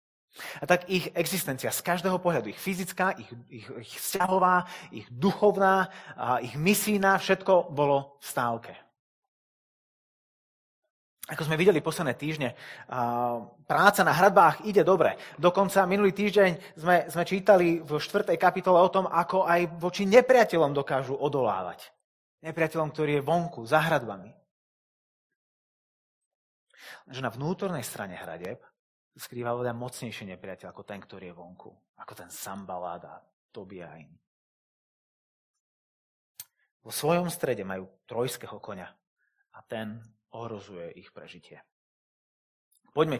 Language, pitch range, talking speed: Slovak, 120-180 Hz, 115 wpm